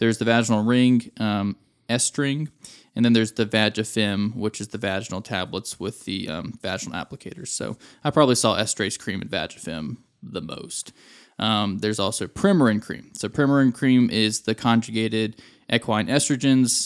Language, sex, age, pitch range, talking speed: English, male, 20-39, 105-125 Hz, 155 wpm